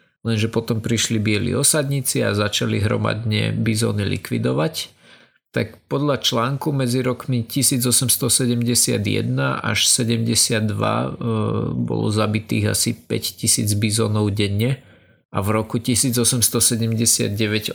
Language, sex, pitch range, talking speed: Slovak, male, 110-120 Hz, 100 wpm